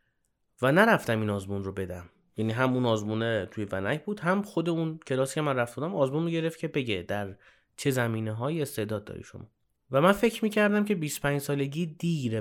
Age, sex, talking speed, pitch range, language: 30-49, male, 195 wpm, 105-135 Hz, Persian